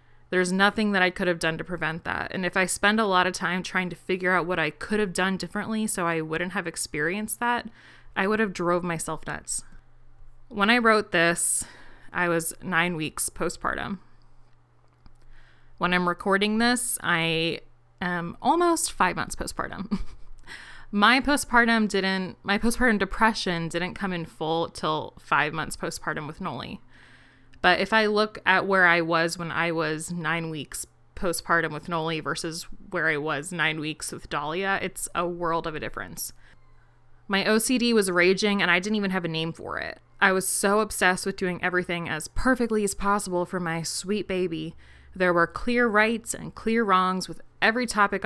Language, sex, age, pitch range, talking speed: English, female, 20-39, 165-205 Hz, 180 wpm